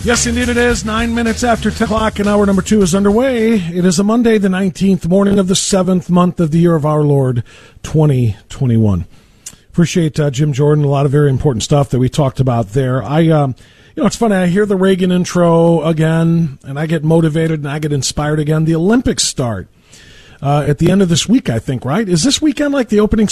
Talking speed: 225 wpm